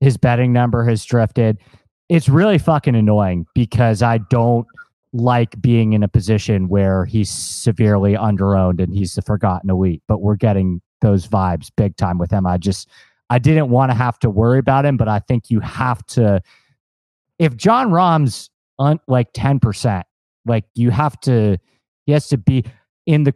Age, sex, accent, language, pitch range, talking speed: 30-49, male, American, English, 105-130 Hz, 175 wpm